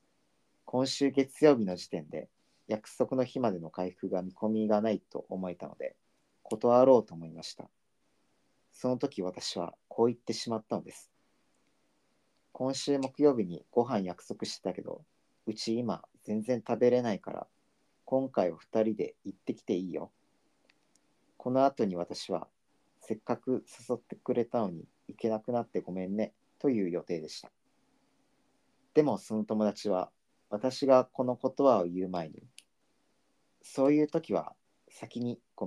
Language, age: Japanese, 40-59